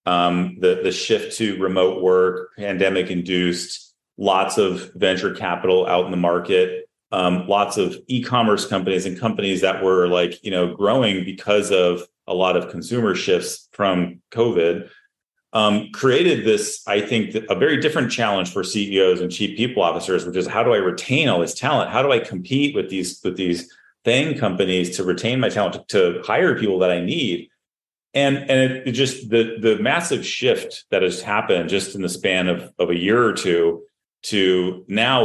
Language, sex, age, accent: English, male, 40-59, American